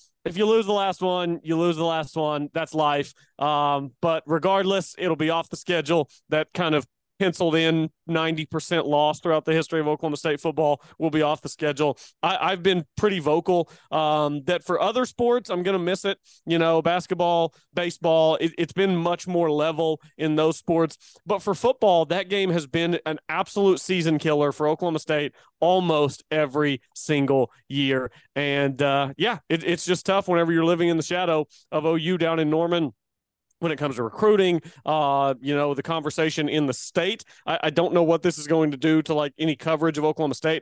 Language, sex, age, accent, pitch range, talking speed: English, male, 30-49, American, 150-175 Hz, 195 wpm